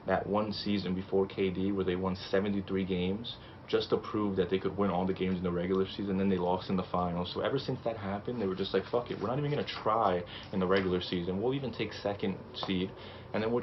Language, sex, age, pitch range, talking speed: English, male, 20-39, 95-110 Hz, 260 wpm